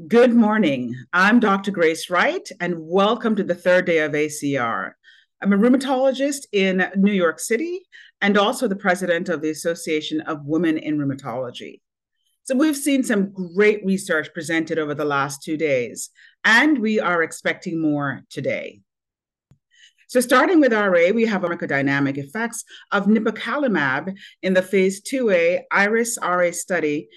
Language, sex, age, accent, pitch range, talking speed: English, female, 40-59, American, 165-230 Hz, 150 wpm